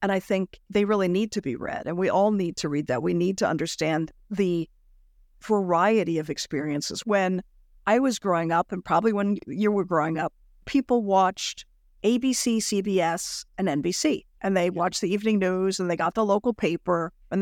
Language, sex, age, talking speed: English, female, 50-69, 190 wpm